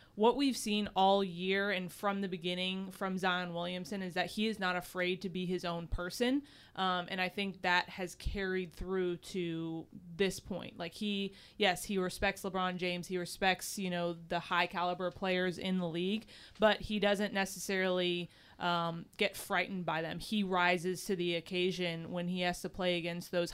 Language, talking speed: English, 185 wpm